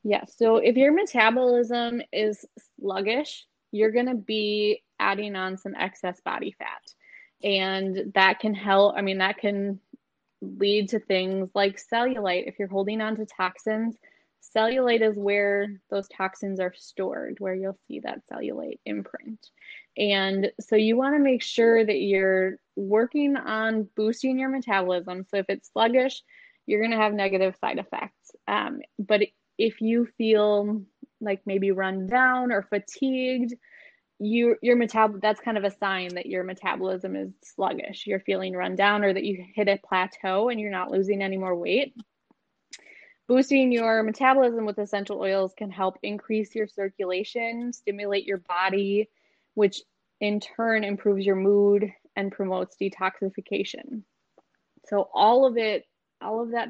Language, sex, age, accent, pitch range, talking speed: English, female, 20-39, American, 195-235 Hz, 155 wpm